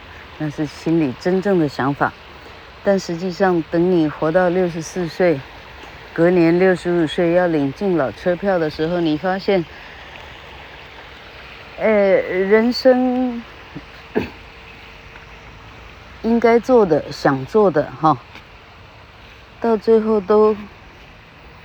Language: Chinese